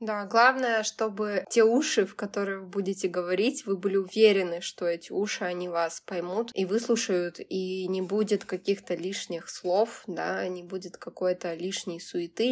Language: Russian